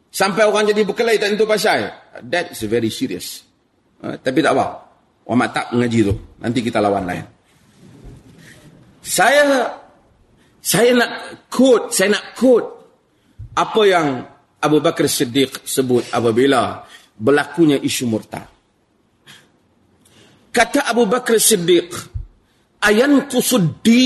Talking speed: 105 wpm